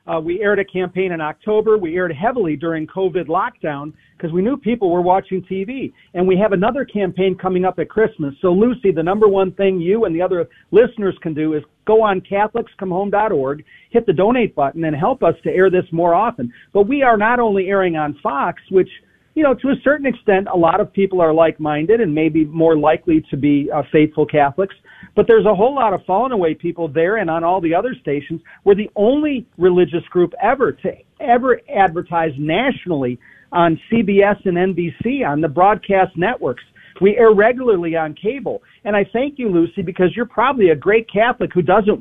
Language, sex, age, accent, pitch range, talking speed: English, male, 40-59, American, 165-215 Hz, 200 wpm